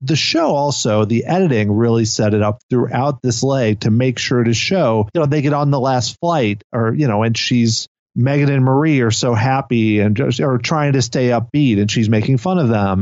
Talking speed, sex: 225 wpm, male